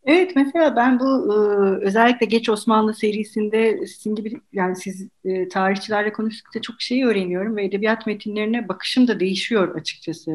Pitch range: 180-240 Hz